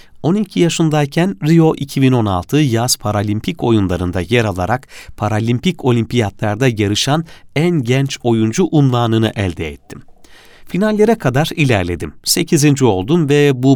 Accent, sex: native, male